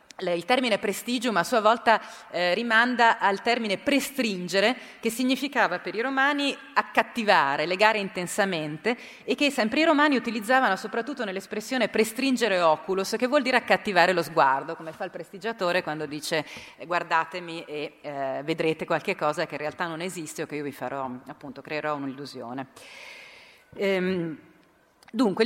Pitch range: 160-230 Hz